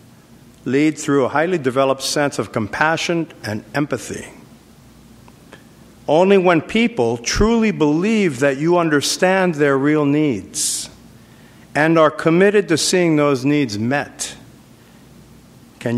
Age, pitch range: 50-69, 120-150 Hz